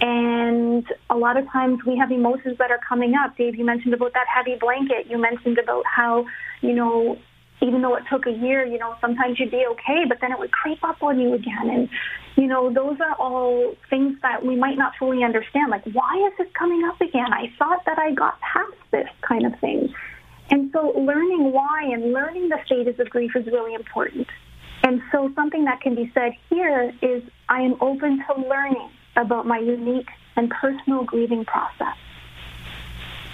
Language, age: English, 30-49